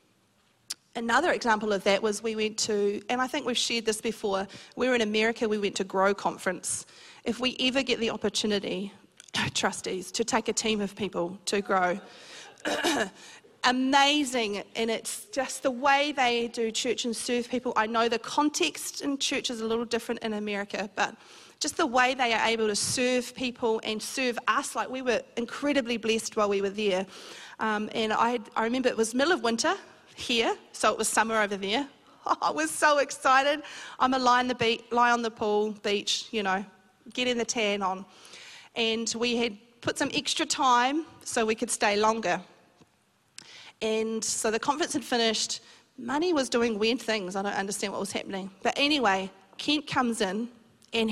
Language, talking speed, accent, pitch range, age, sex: English, 180 wpm, Australian, 215-255 Hz, 40-59, female